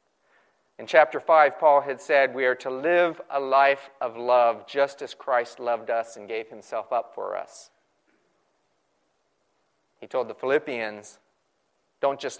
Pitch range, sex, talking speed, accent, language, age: 130-170 Hz, male, 150 wpm, American, English, 40-59